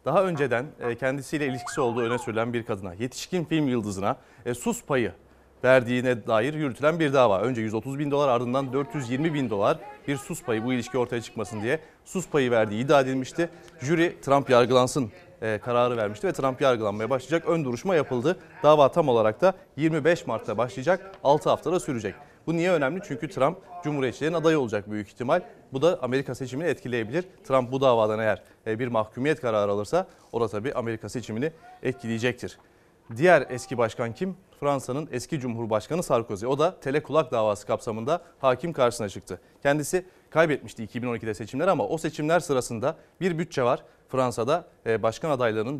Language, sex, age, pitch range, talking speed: Turkish, male, 30-49, 115-155 Hz, 160 wpm